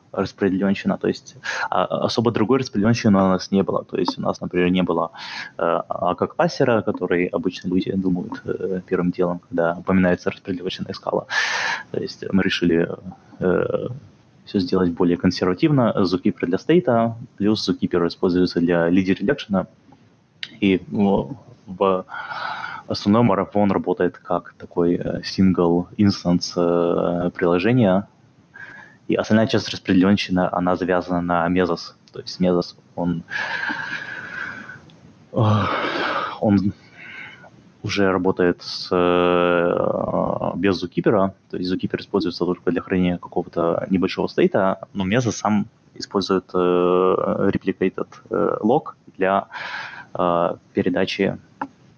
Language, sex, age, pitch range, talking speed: Russian, male, 20-39, 90-100 Hz, 110 wpm